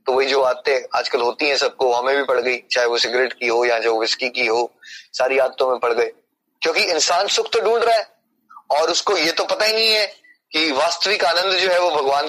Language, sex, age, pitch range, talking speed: Hindi, male, 20-39, 135-190 Hz, 240 wpm